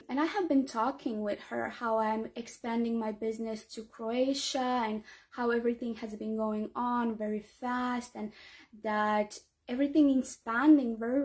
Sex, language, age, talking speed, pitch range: female, English, 20-39, 155 wpm, 220-280 Hz